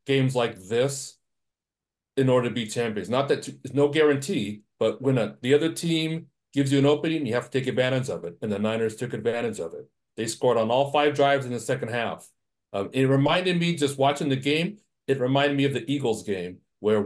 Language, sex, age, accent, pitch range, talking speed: English, male, 40-59, American, 120-150 Hz, 220 wpm